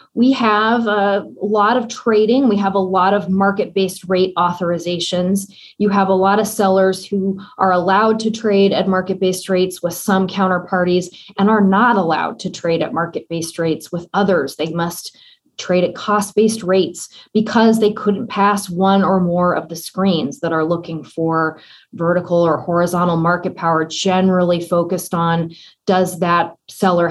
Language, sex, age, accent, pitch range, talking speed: English, female, 20-39, American, 175-205 Hz, 160 wpm